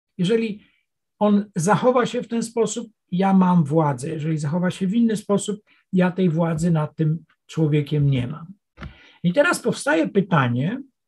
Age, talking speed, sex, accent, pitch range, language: 60-79, 150 wpm, male, native, 170-225 Hz, Polish